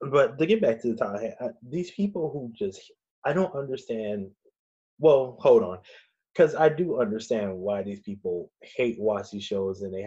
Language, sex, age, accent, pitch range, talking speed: English, male, 20-39, American, 100-125 Hz, 165 wpm